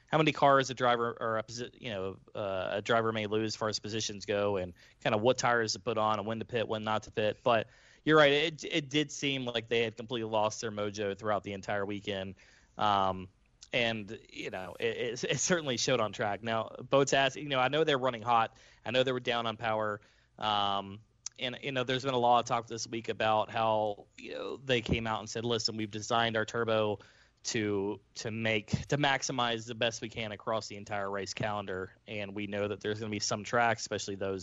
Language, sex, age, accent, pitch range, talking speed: English, male, 20-39, American, 105-125 Hz, 230 wpm